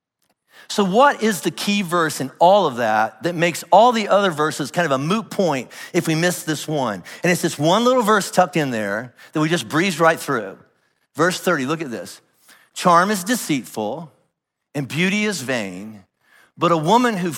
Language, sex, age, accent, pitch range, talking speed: English, male, 50-69, American, 155-205 Hz, 195 wpm